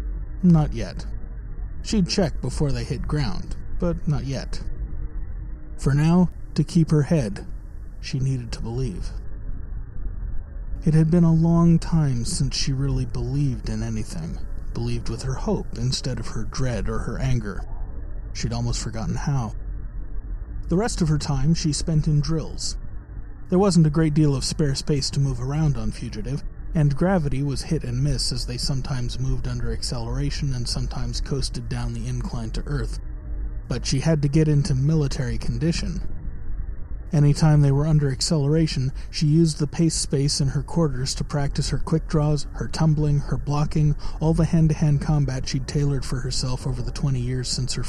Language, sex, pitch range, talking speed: English, male, 120-155 Hz, 170 wpm